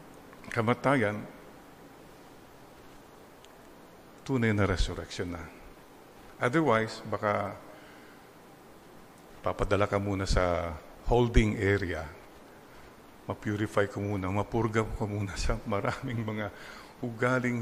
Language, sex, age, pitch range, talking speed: English, male, 50-69, 105-140 Hz, 80 wpm